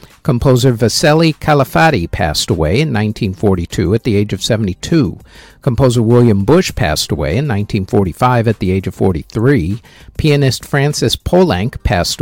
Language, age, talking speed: English, 50-69, 135 wpm